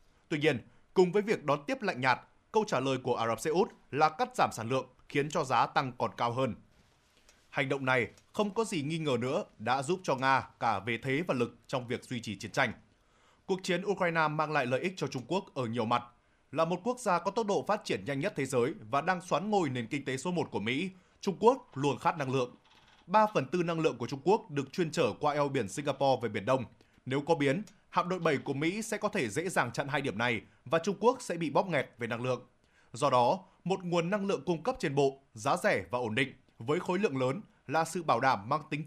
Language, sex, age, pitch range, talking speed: Vietnamese, male, 20-39, 125-185 Hz, 255 wpm